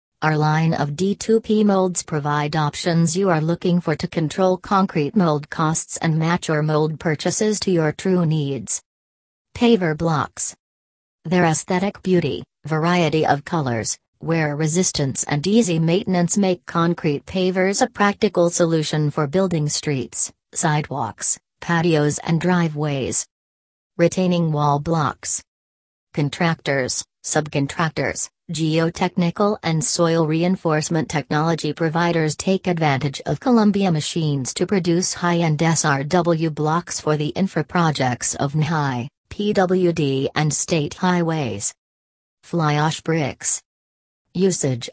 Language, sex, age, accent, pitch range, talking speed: English, female, 40-59, American, 145-175 Hz, 110 wpm